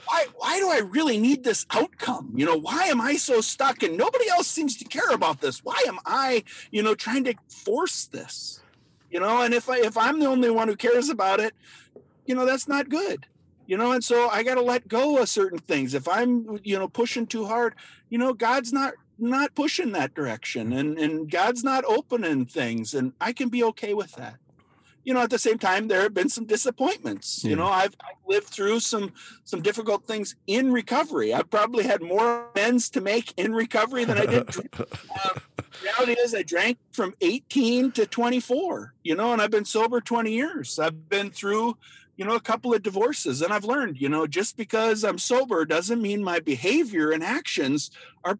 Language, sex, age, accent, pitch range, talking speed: English, male, 50-69, American, 200-260 Hz, 205 wpm